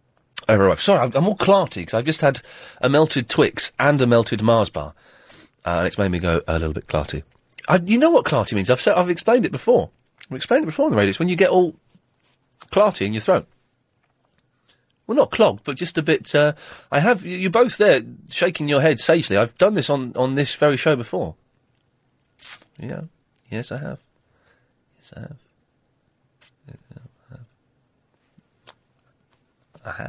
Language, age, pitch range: English, 30-49, 120-175 Hz